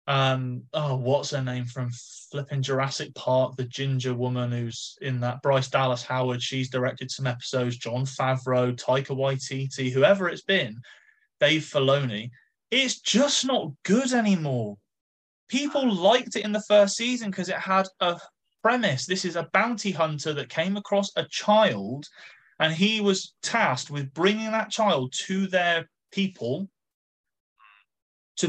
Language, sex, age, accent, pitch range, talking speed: English, male, 20-39, British, 135-190 Hz, 145 wpm